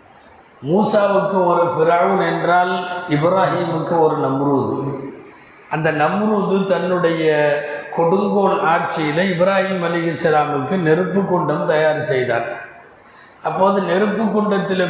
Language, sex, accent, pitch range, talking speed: Tamil, male, native, 155-185 Hz, 85 wpm